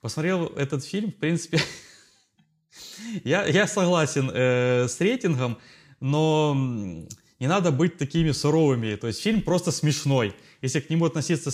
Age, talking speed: 20-39, 125 wpm